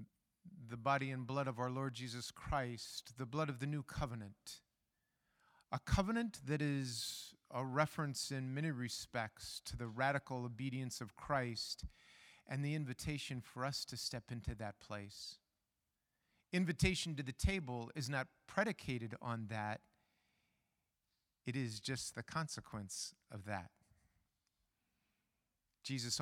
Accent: American